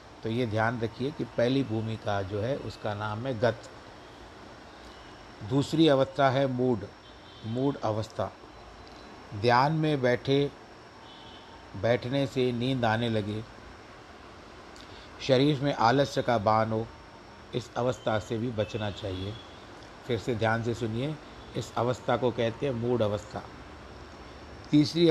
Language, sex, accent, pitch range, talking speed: Hindi, male, native, 110-130 Hz, 125 wpm